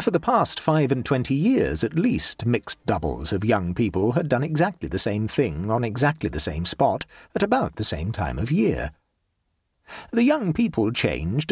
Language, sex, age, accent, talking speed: English, male, 50-69, British, 190 wpm